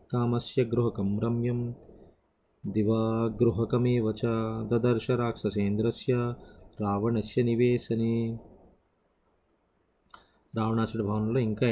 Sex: male